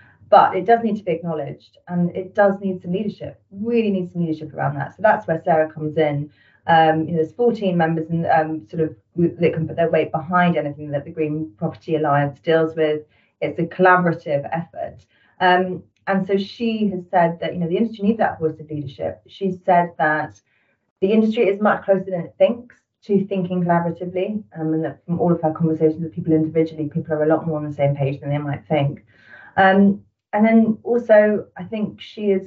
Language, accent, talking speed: English, British, 215 wpm